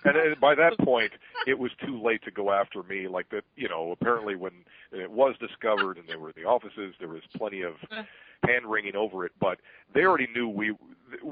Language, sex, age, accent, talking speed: English, male, 50-69, American, 205 wpm